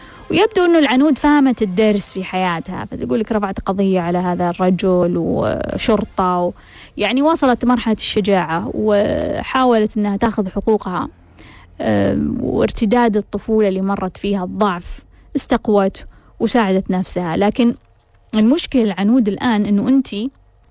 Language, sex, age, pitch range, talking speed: Arabic, female, 20-39, 195-235 Hz, 110 wpm